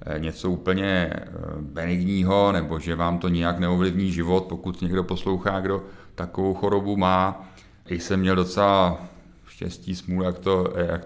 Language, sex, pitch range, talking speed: Czech, male, 85-95 Hz, 140 wpm